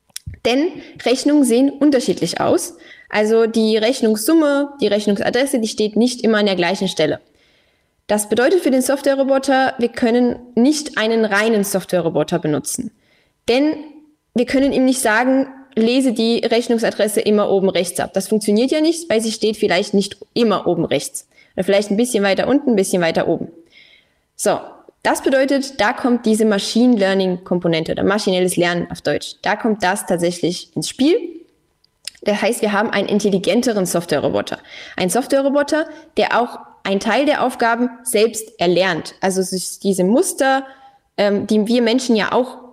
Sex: female